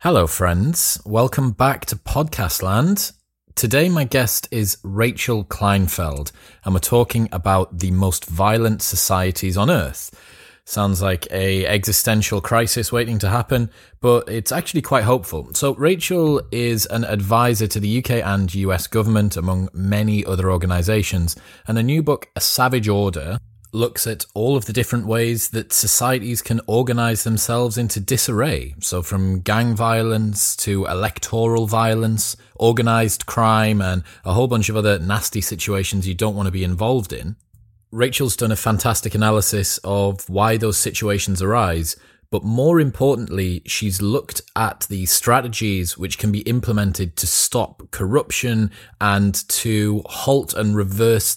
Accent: British